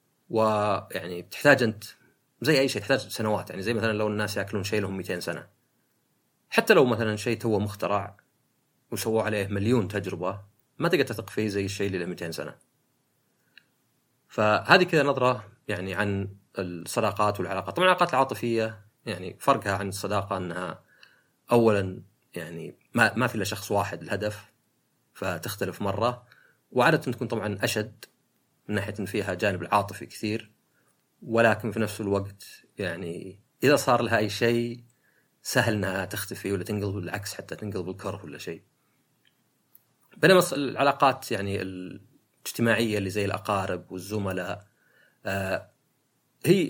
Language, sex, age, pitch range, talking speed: Arabic, male, 30-49, 100-120 Hz, 135 wpm